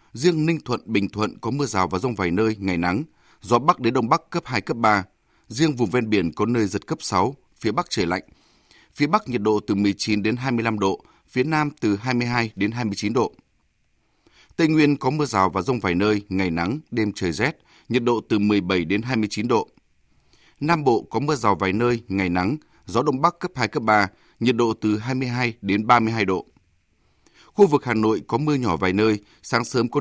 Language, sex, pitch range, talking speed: Vietnamese, male, 105-130 Hz, 215 wpm